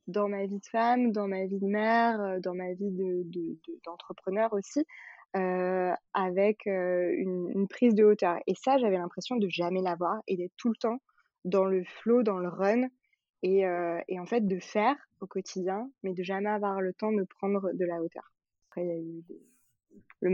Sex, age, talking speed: female, 20-39, 210 wpm